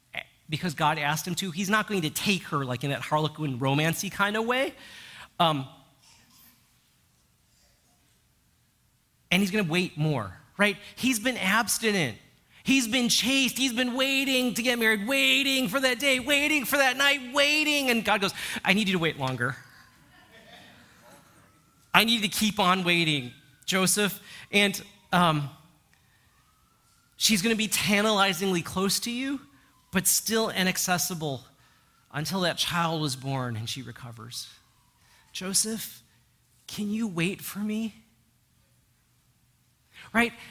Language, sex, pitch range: English, male, 145-225 Hz